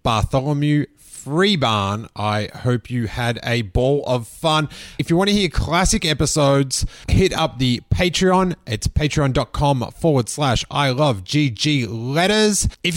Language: English